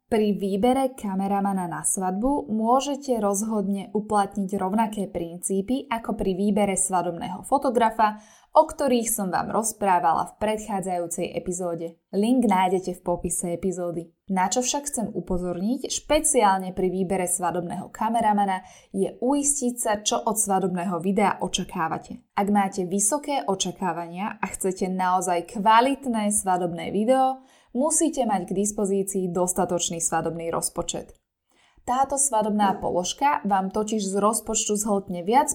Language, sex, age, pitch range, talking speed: Slovak, female, 10-29, 180-230 Hz, 120 wpm